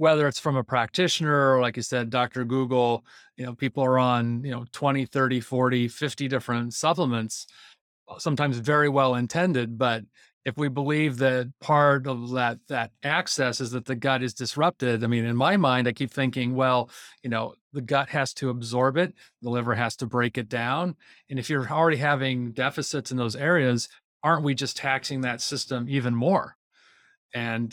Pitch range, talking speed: 120-140 Hz, 185 wpm